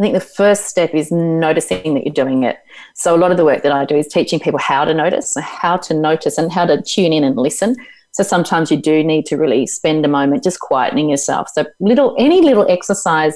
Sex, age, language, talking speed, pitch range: female, 30-49, English, 245 wpm, 155-215 Hz